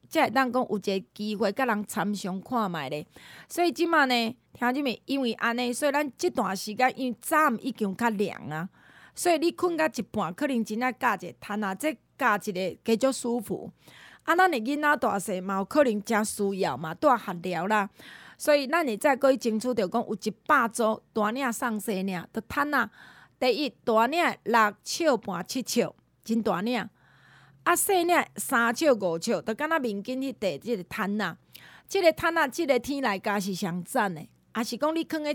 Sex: female